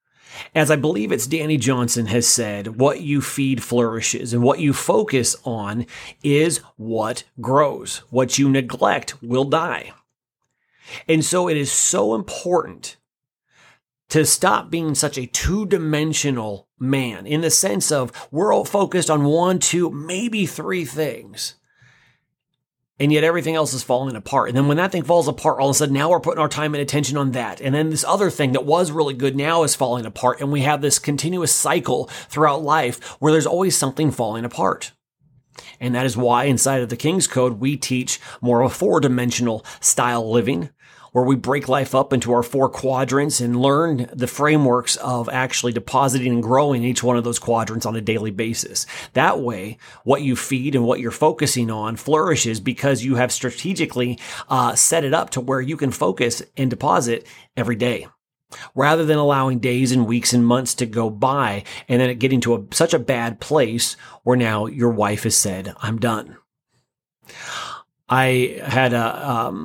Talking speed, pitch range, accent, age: 180 wpm, 120-150 Hz, American, 30-49